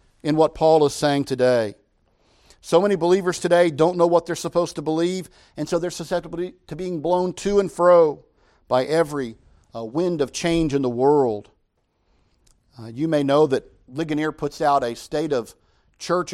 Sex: male